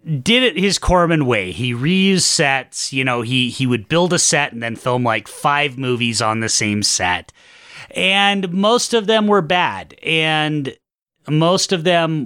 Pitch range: 110-160 Hz